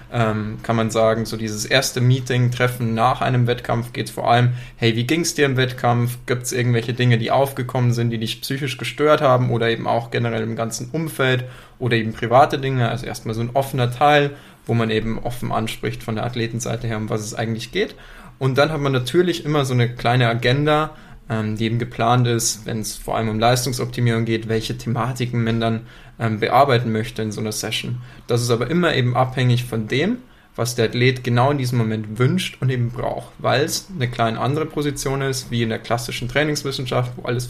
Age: 20-39